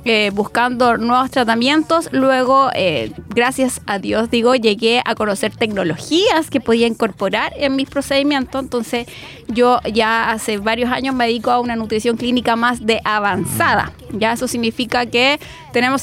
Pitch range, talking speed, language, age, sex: 230-270 Hz, 150 wpm, Spanish, 20-39, female